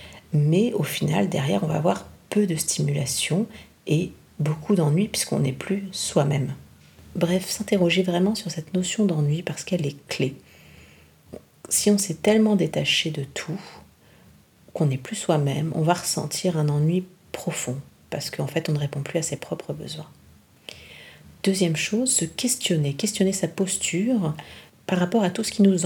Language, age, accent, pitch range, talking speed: French, 40-59, French, 150-195 Hz, 160 wpm